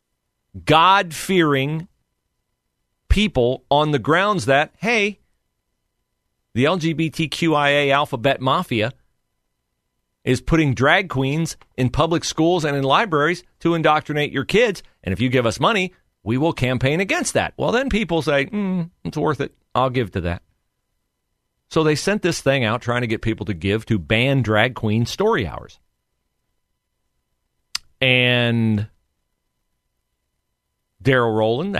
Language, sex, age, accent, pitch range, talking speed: English, male, 40-59, American, 110-165 Hz, 130 wpm